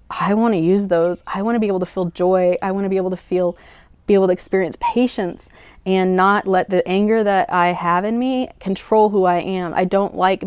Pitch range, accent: 180-200 Hz, American